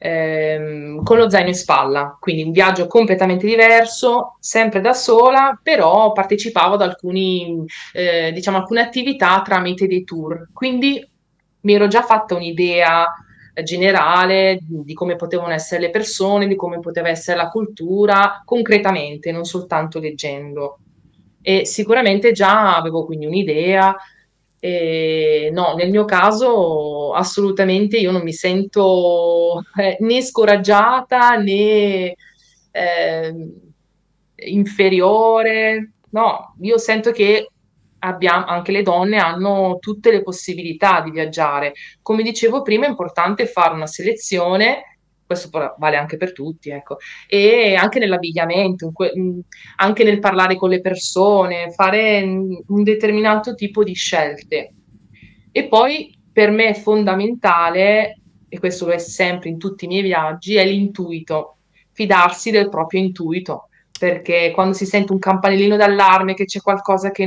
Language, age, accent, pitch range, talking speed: Italian, 20-39, native, 170-210 Hz, 130 wpm